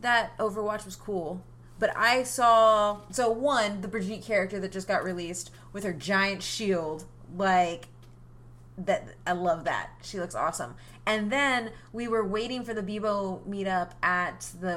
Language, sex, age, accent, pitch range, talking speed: English, female, 20-39, American, 170-215 Hz, 160 wpm